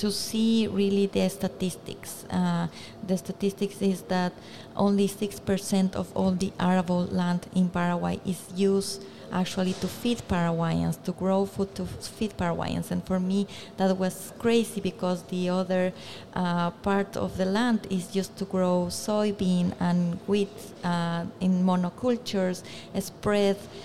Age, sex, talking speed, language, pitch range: 30-49, female, 140 wpm, French, 180-200 Hz